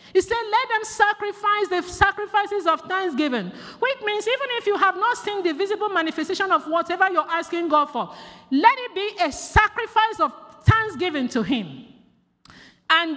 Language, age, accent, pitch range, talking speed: English, 50-69, Nigerian, 255-390 Hz, 165 wpm